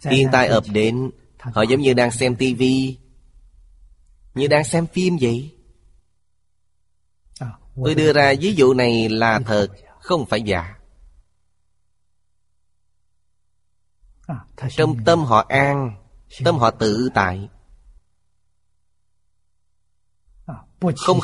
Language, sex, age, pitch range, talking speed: Vietnamese, male, 30-49, 95-130 Hz, 100 wpm